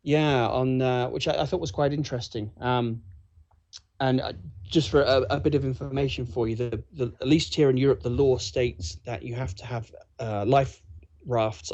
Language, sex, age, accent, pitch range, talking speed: English, male, 30-49, British, 100-125 Hz, 205 wpm